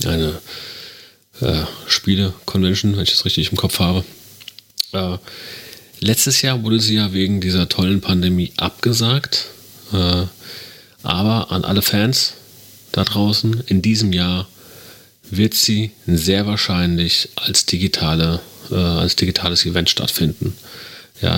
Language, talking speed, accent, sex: German, 120 wpm, German, male